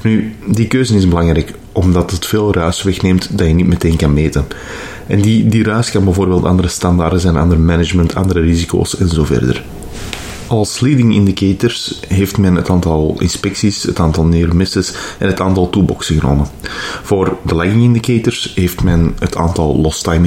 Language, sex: Dutch, male